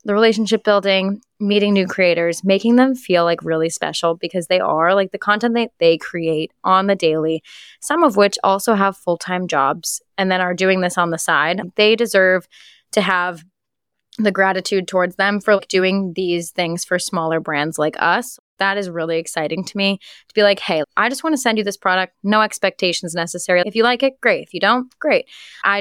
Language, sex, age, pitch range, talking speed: English, female, 20-39, 170-205 Hz, 205 wpm